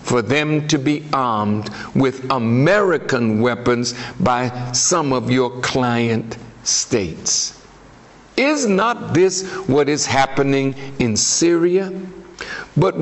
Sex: male